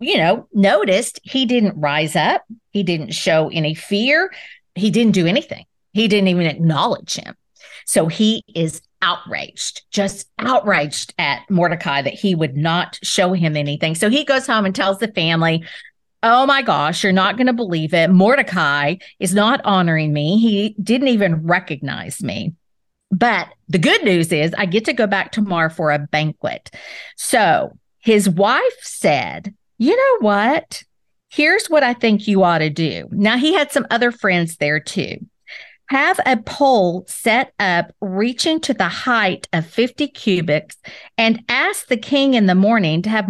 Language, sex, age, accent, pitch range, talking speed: English, female, 50-69, American, 170-245 Hz, 170 wpm